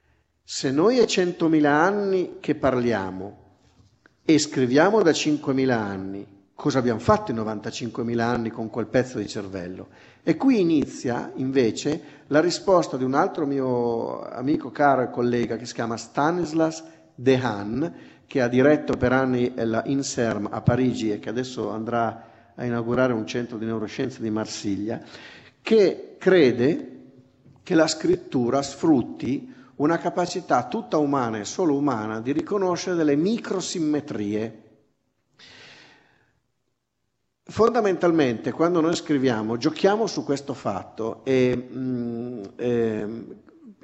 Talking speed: 125 wpm